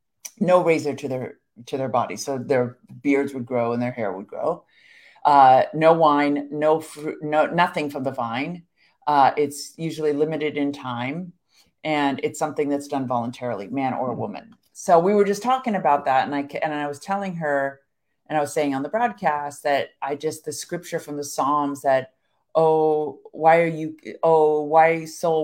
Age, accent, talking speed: 50-69, American, 185 wpm